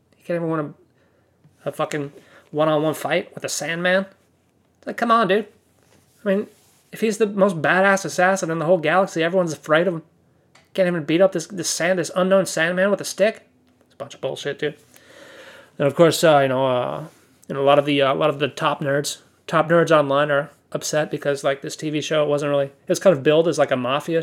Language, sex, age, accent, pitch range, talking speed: English, male, 20-39, American, 145-185 Hz, 225 wpm